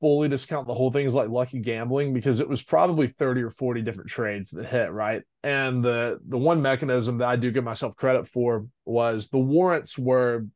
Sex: male